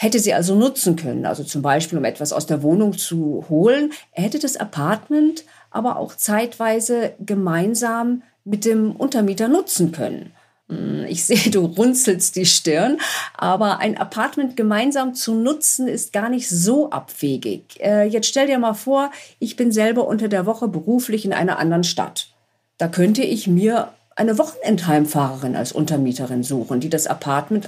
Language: German